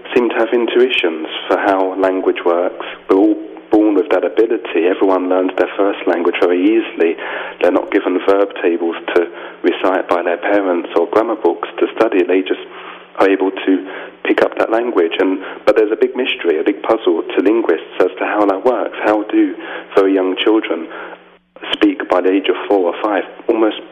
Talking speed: 190 wpm